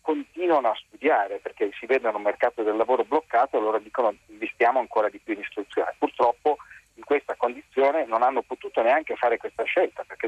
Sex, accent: male, native